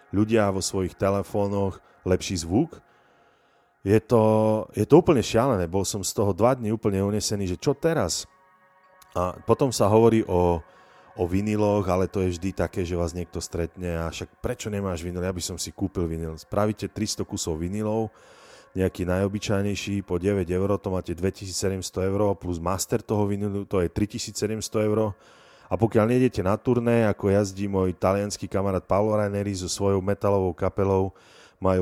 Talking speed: 165 wpm